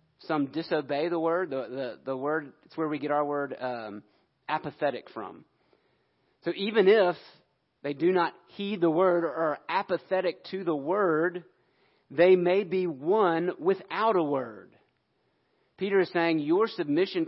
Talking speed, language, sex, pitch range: 155 wpm, English, male, 145-185 Hz